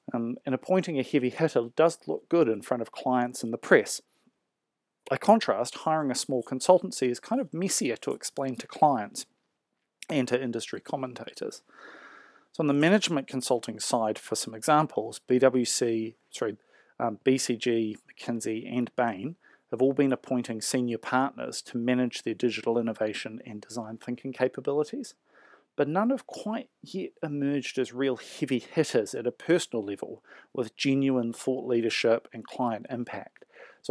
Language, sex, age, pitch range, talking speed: English, male, 40-59, 115-145 Hz, 155 wpm